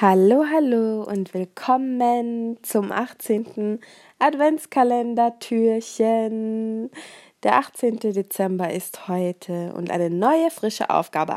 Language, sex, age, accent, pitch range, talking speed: German, female, 20-39, German, 200-265 Hz, 90 wpm